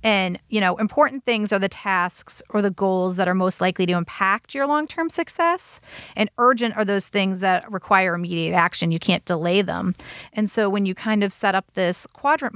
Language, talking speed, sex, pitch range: English, 205 wpm, female, 180-215 Hz